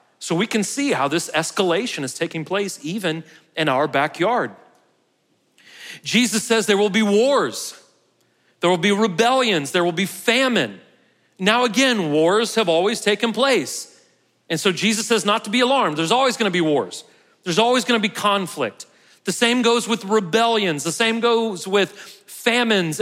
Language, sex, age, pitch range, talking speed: English, male, 40-59, 180-230 Hz, 165 wpm